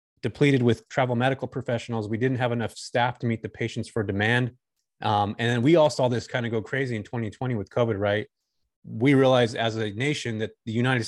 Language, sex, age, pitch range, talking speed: English, male, 30-49, 110-130 Hz, 215 wpm